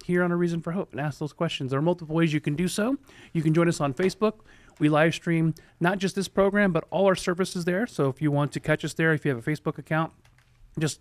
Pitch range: 145-175 Hz